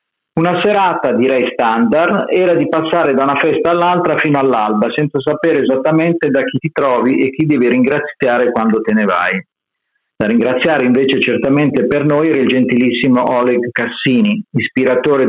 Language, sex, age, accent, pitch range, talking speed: Italian, male, 50-69, native, 125-175 Hz, 155 wpm